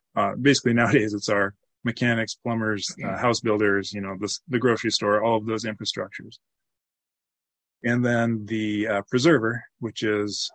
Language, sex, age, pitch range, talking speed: English, male, 20-39, 100-120 Hz, 155 wpm